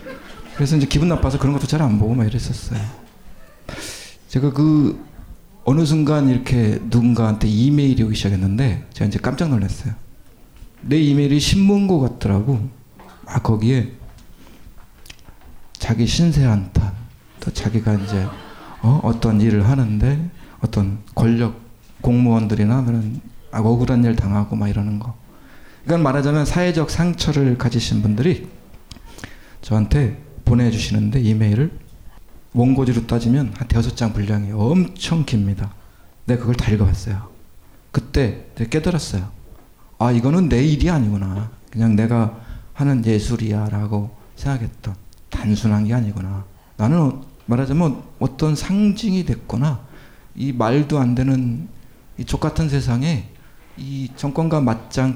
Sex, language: male, Korean